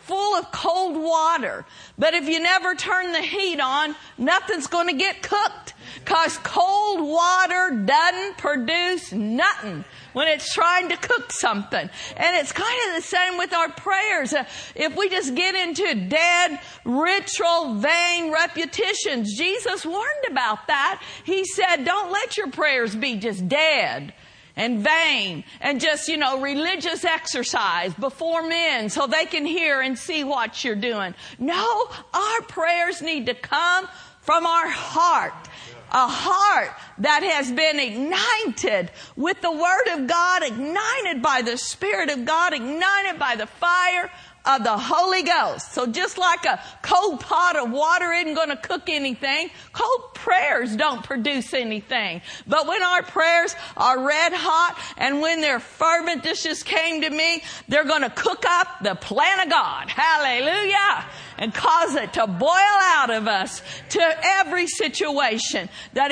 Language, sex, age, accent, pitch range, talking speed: English, female, 50-69, American, 280-365 Hz, 155 wpm